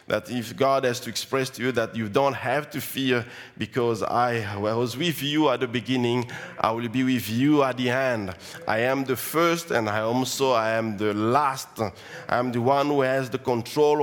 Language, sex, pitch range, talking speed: English, male, 125-170 Hz, 205 wpm